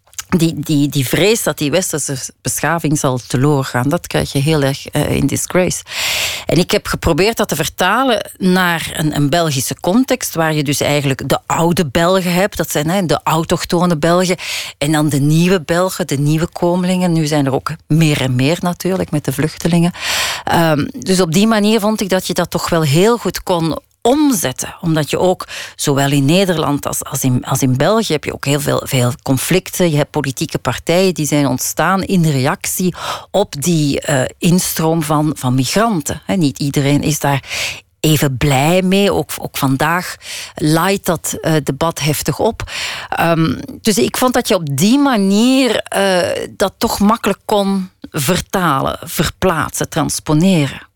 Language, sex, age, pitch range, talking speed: Dutch, female, 40-59, 145-185 Hz, 165 wpm